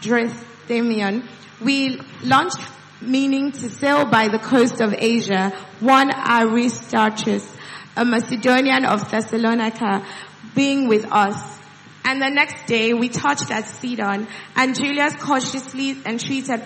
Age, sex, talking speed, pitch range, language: 20-39, female, 115 wpm, 220-260 Hz, English